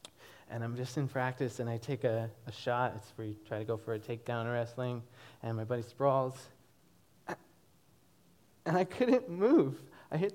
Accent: American